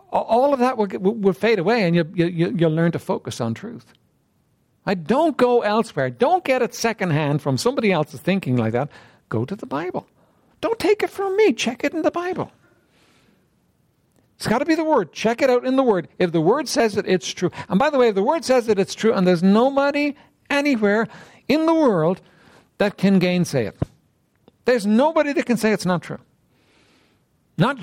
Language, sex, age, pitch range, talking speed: English, male, 60-79, 175-250 Hz, 205 wpm